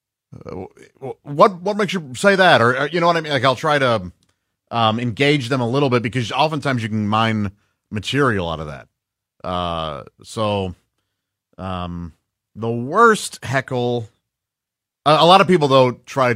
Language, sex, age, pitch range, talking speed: English, male, 40-59, 110-145 Hz, 165 wpm